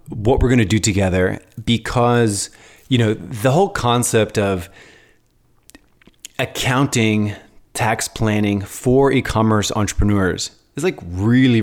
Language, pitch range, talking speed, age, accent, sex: English, 95-115 Hz, 115 wpm, 30-49, American, male